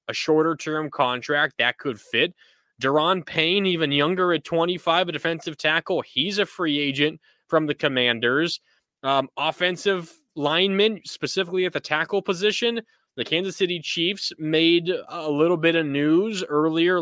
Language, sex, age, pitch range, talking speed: English, male, 20-39, 140-180 Hz, 145 wpm